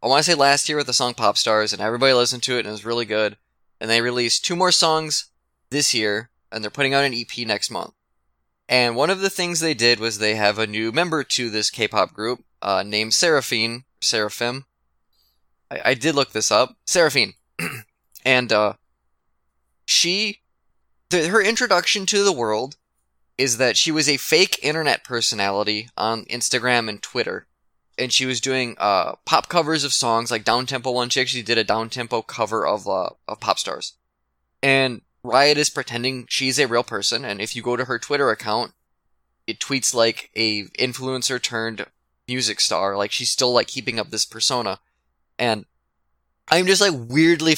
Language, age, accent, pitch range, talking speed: English, 20-39, American, 105-135 Hz, 185 wpm